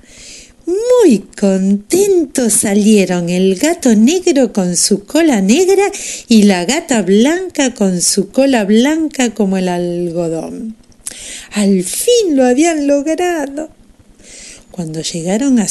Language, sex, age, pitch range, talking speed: Spanish, female, 50-69, 205-335 Hz, 110 wpm